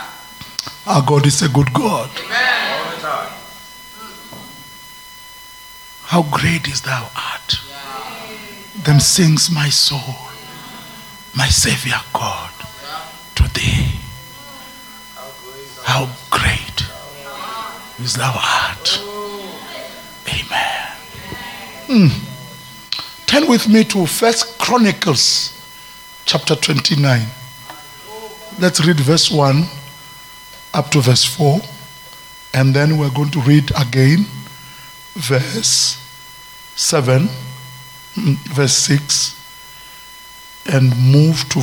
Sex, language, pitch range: male, English, 135-200 Hz